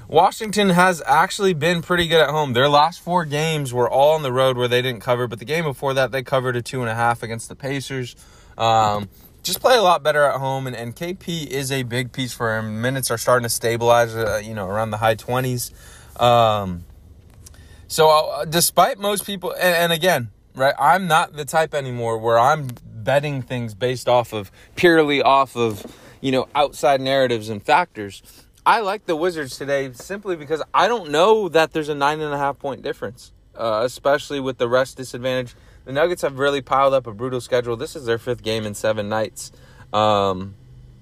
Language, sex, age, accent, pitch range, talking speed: English, male, 20-39, American, 115-150 Hz, 205 wpm